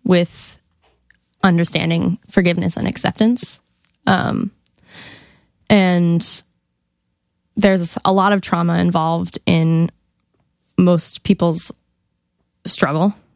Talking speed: 75 wpm